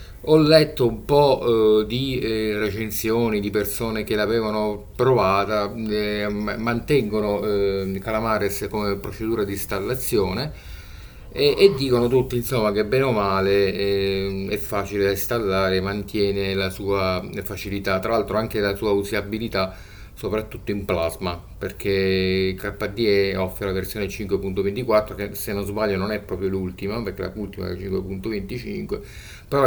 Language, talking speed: Italian, 140 wpm